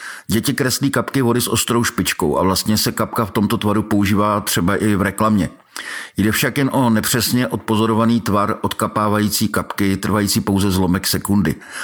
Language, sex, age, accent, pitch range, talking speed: Czech, male, 50-69, native, 95-115 Hz, 160 wpm